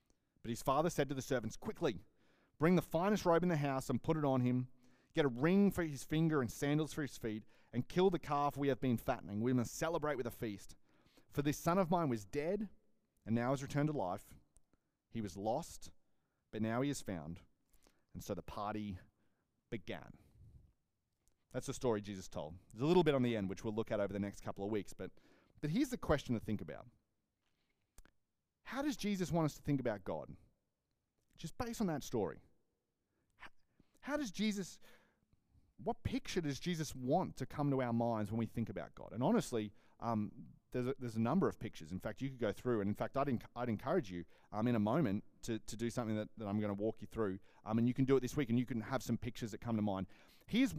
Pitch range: 110-145 Hz